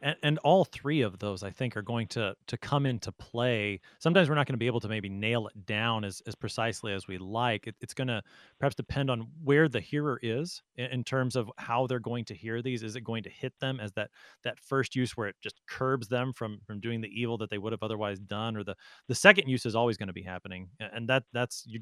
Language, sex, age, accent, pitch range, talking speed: English, male, 30-49, American, 105-135 Hz, 265 wpm